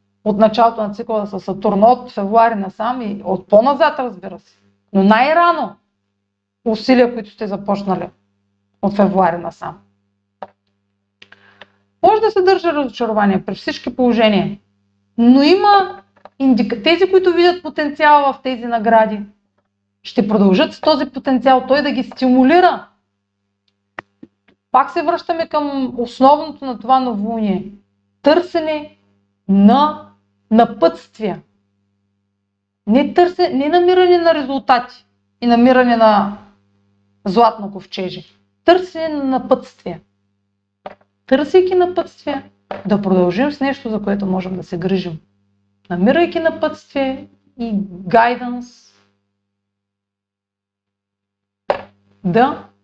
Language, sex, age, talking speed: Bulgarian, female, 40-59, 100 wpm